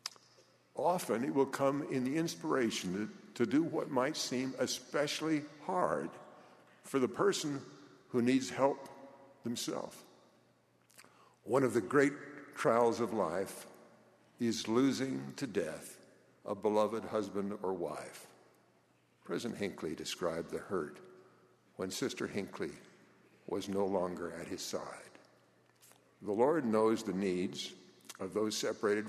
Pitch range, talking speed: 95-125 Hz, 125 wpm